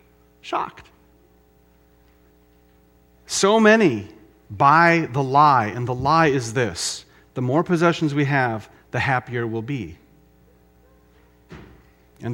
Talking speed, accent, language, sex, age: 105 wpm, American, English, male, 40-59